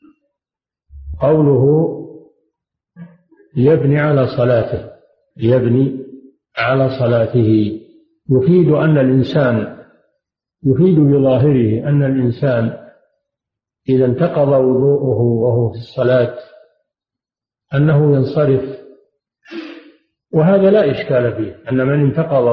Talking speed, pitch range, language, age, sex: 75 wpm, 120-145 Hz, Arabic, 50-69, male